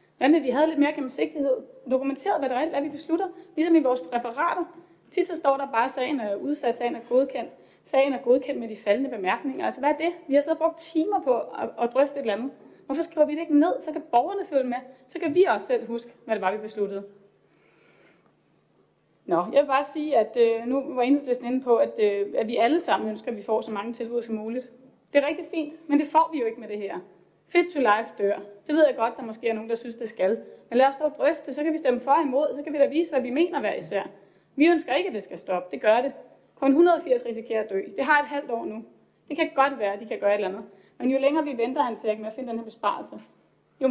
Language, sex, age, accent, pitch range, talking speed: Danish, female, 30-49, native, 230-300 Hz, 270 wpm